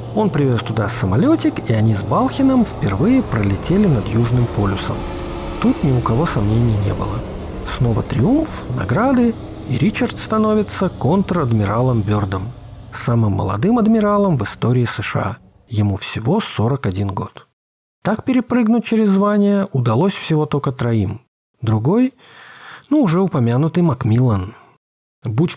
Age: 40-59